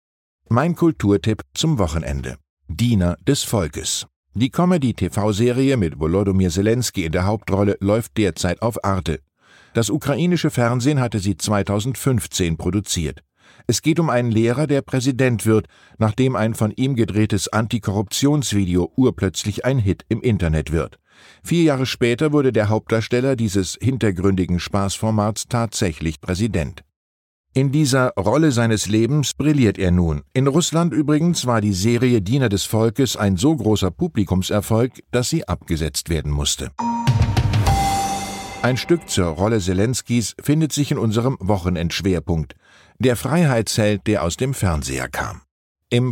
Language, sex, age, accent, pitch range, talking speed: German, male, 50-69, German, 95-130 Hz, 130 wpm